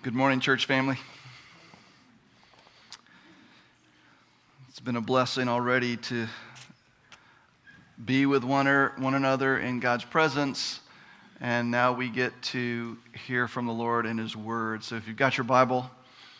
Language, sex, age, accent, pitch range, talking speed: English, male, 40-59, American, 125-160 Hz, 135 wpm